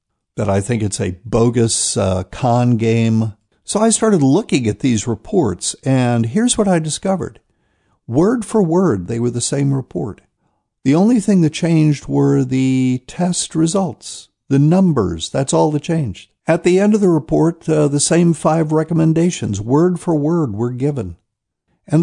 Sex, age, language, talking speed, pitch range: male, 60-79, English, 165 wpm, 105-150 Hz